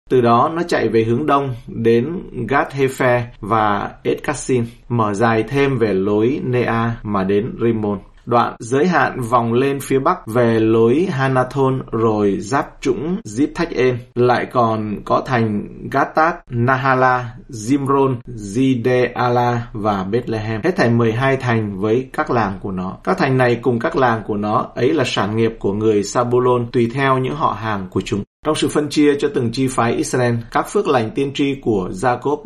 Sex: male